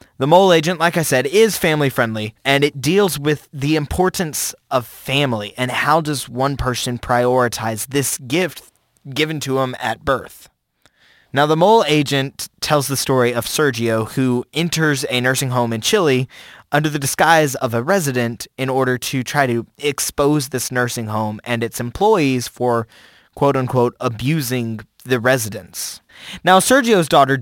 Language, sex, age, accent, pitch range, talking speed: English, male, 20-39, American, 120-145 Hz, 160 wpm